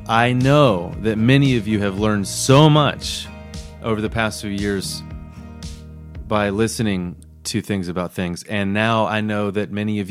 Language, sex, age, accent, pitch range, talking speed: English, male, 30-49, American, 95-125 Hz, 165 wpm